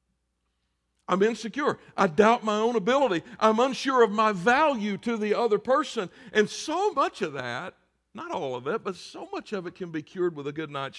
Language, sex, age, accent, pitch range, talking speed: English, male, 60-79, American, 145-210 Hz, 200 wpm